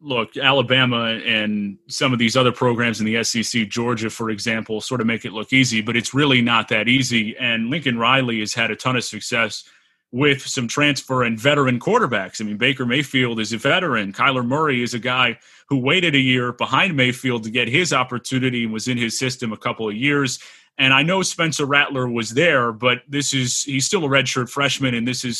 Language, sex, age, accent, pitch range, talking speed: English, male, 30-49, American, 120-140 Hz, 215 wpm